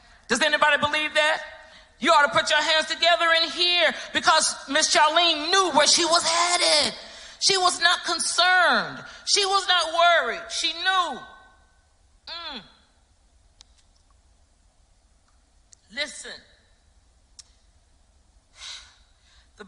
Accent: American